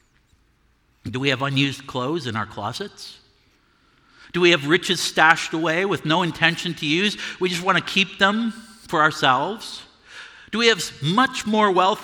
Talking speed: 165 wpm